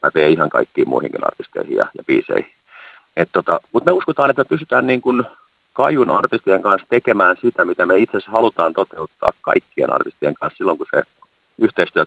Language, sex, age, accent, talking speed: Finnish, male, 40-59, native, 170 wpm